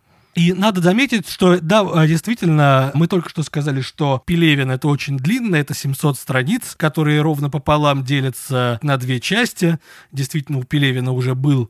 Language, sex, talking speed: Russian, male, 160 wpm